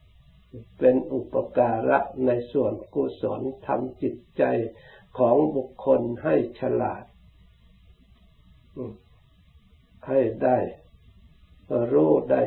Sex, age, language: male, 60-79, Thai